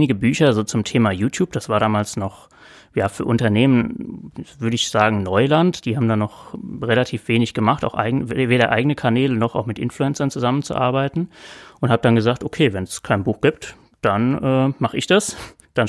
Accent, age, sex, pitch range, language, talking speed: German, 30-49, male, 110-135 Hz, German, 185 wpm